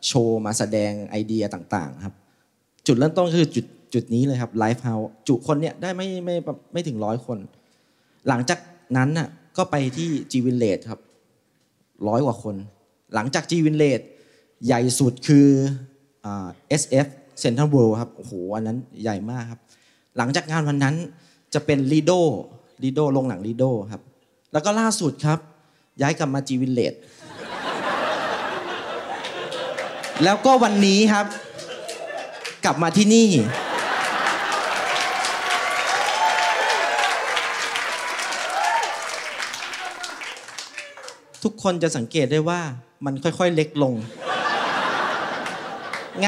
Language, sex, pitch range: Thai, male, 125-180 Hz